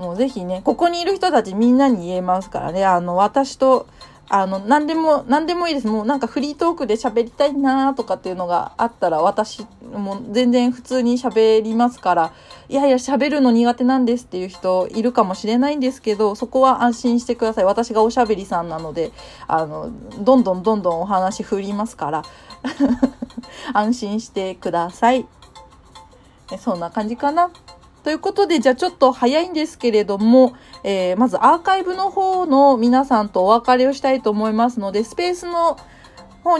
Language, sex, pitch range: Japanese, female, 210-275 Hz